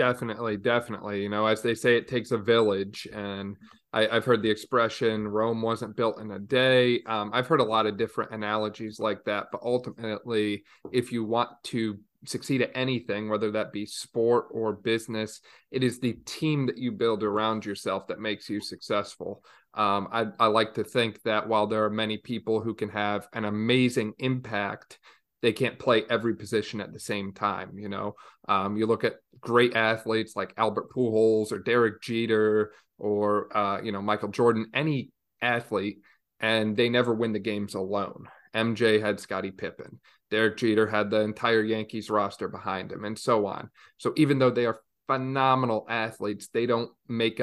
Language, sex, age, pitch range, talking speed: English, male, 30-49, 105-115 Hz, 180 wpm